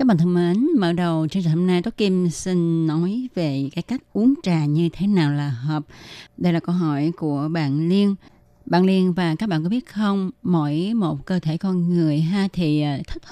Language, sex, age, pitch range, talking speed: Vietnamese, female, 20-39, 155-200 Hz, 215 wpm